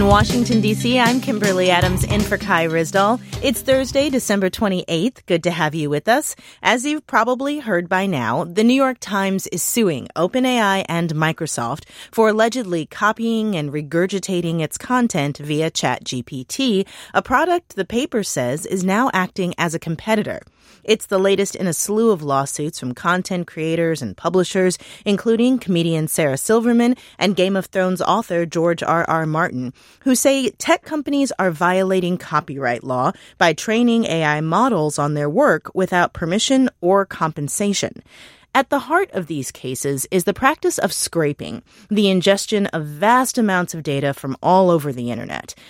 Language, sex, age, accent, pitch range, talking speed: English, female, 30-49, American, 160-225 Hz, 160 wpm